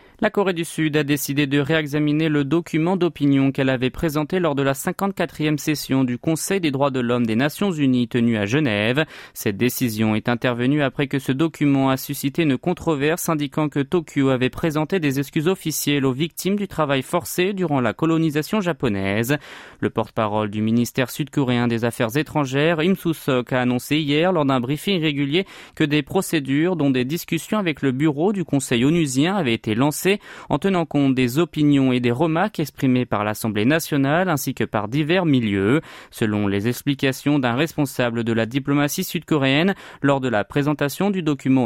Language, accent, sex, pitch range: French, French, male, 130-165 Hz